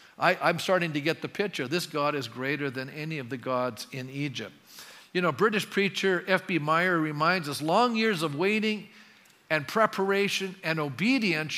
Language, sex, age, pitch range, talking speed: English, male, 50-69, 145-195 Hz, 170 wpm